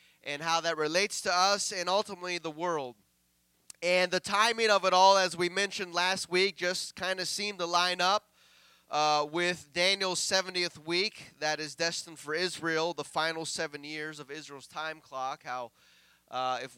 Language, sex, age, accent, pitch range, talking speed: English, male, 20-39, American, 135-185 Hz, 175 wpm